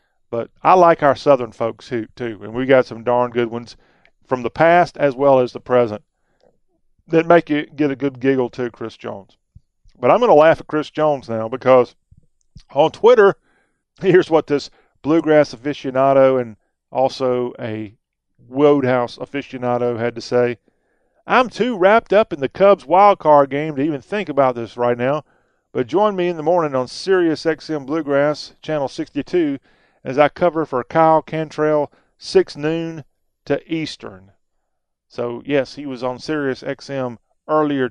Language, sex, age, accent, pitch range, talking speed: English, male, 40-59, American, 120-155 Hz, 165 wpm